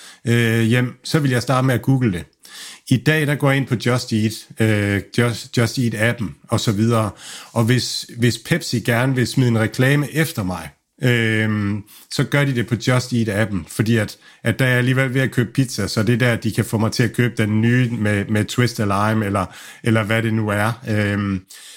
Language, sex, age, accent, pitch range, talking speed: Danish, male, 50-69, native, 110-135 Hz, 225 wpm